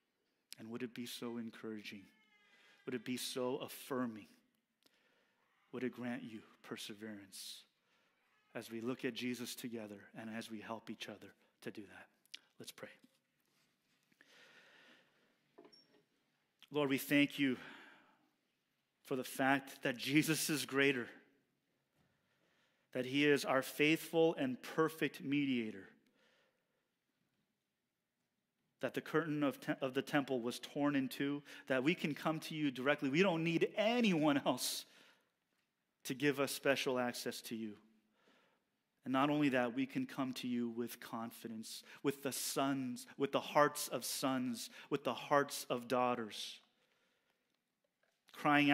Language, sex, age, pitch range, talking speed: English, male, 30-49, 120-150 Hz, 130 wpm